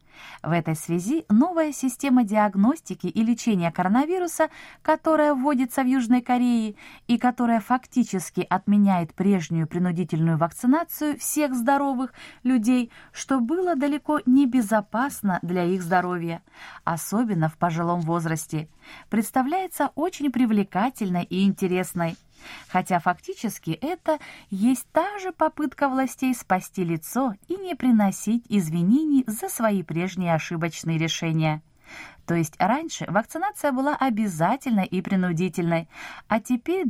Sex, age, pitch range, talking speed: female, 20-39, 175-255 Hz, 110 wpm